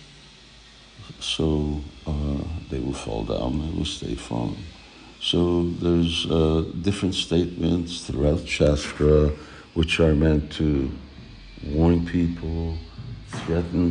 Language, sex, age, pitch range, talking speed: English, male, 60-79, 75-85 Hz, 105 wpm